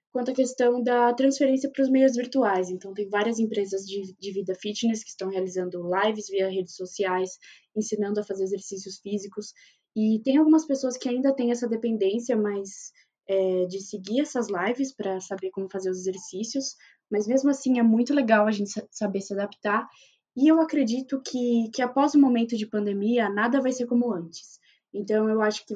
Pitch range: 195-245 Hz